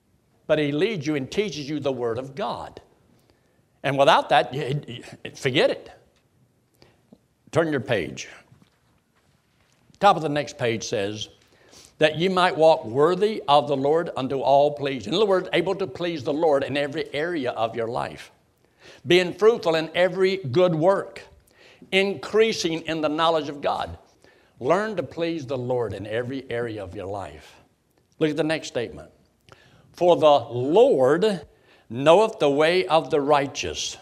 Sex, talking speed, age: male, 155 wpm, 60-79